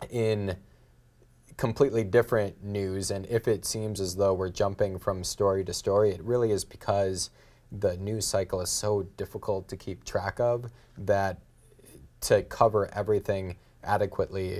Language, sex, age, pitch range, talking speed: English, male, 30-49, 95-105 Hz, 145 wpm